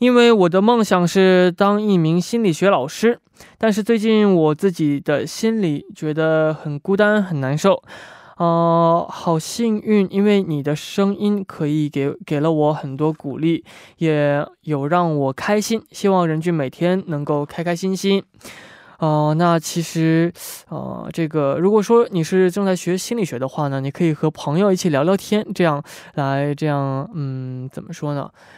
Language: Korean